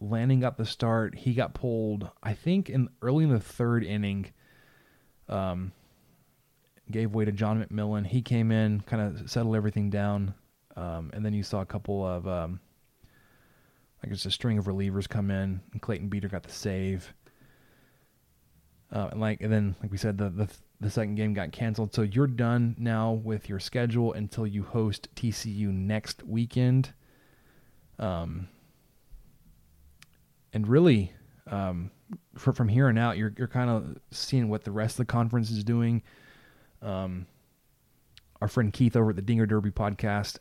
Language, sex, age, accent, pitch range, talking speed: English, male, 20-39, American, 100-120 Hz, 165 wpm